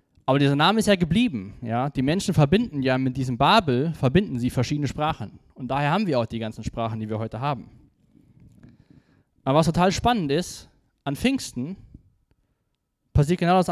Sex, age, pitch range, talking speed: male, 20-39, 135-180 Hz, 160 wpm